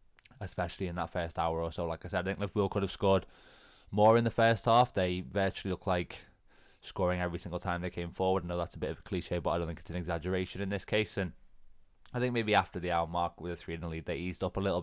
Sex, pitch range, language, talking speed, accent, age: male, 85-95 Hz, English, 280 wpm, British, 20-39